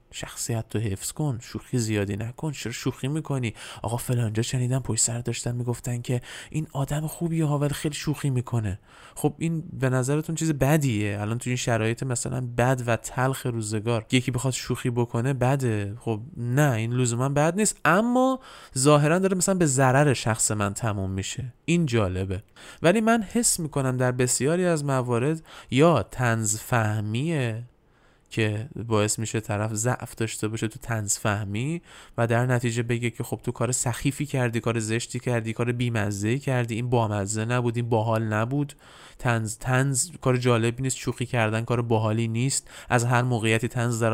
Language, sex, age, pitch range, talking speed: Persian, male, 20-39, 115-140 Hz, 165 wpm